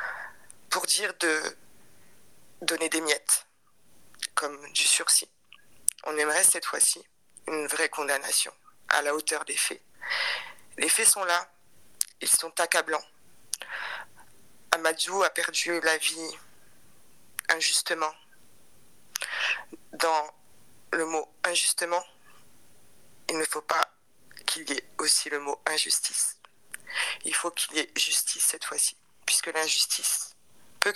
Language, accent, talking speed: French, French, 115 wpm